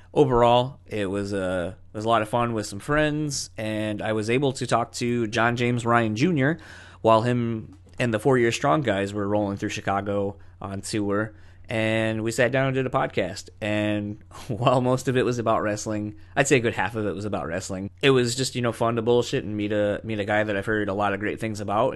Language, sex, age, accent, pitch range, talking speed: English, male, 20-39, American, 100-120 Hz, 240 wpm